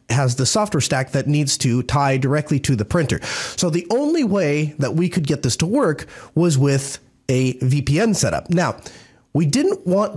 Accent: American